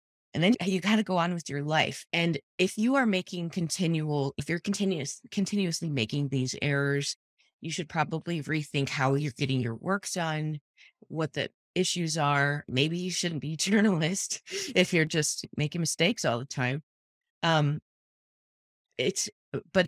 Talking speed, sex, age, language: 160 wpm, female, 30-49, English